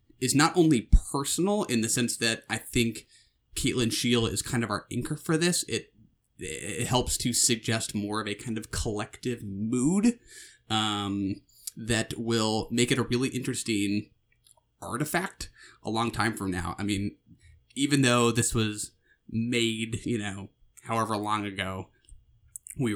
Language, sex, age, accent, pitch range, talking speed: English, male, 20-39, American, 95-120 Hz, 150 wpm